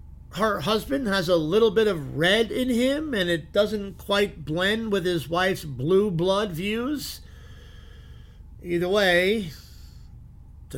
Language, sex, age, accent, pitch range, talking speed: English, male, 50-69, American, 165-225 Hz, 135 wpm